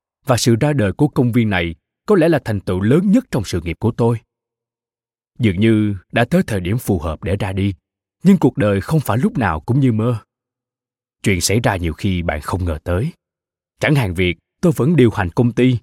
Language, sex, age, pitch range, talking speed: Vietnamese, male, 20-39, 100-135 Hz, 225 wpm